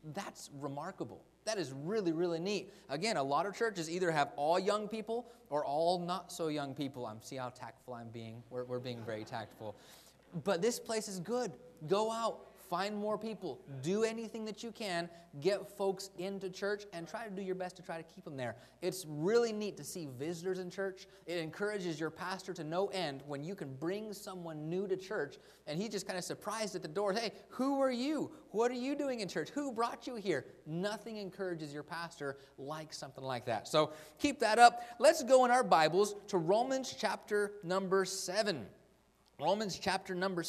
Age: 20-39